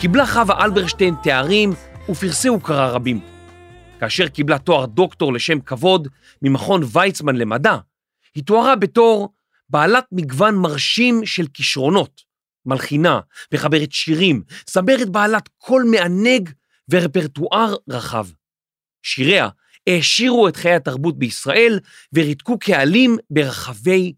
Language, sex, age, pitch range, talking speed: Hebrew, male, 40-59, 145-220 Hz, 105 wpm